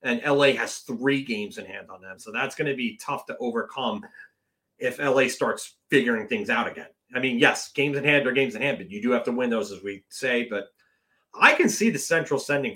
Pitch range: 135-215 Hz